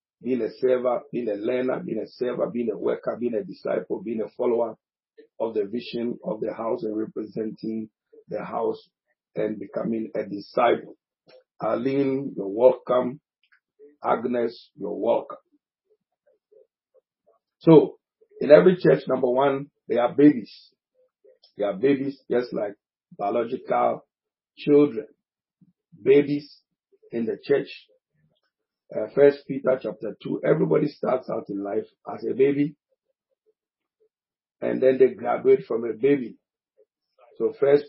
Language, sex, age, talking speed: English, male, 50-69, 125 wpm